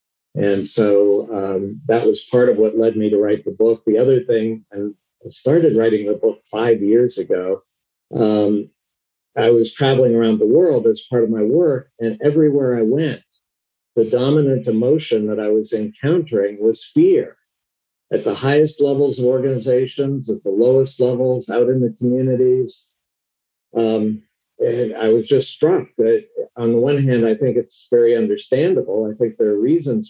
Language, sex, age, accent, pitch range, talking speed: English, male, 50-69, American, 110-150 Hz, 165 wpm